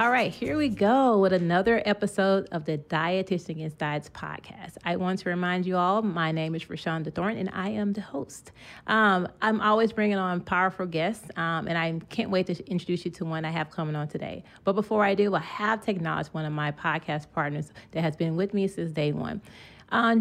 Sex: female